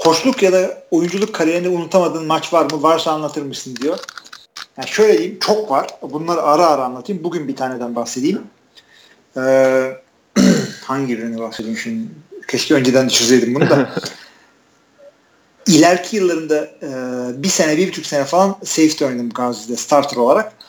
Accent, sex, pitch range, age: native, male, 130-185 Hz, 40-59